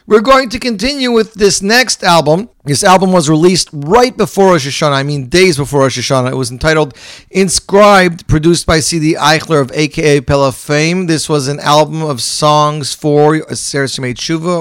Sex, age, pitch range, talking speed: male, 40-59, 130-195 Hz, 185 wpm